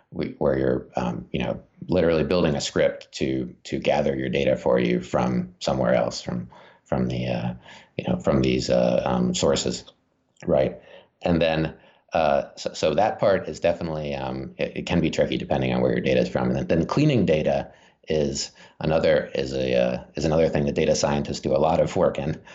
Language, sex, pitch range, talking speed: English, male, 65-80 Hz, 195 wpm